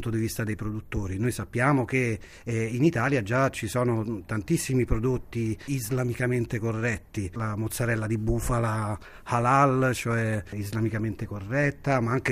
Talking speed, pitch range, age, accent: 130 wpm, 110-135 Hz, 30-49, native